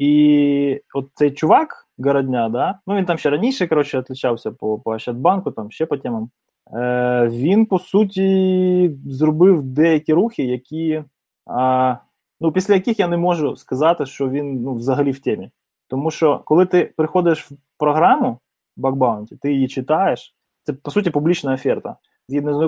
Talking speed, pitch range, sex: 155 wpm, 130-170 Hz, male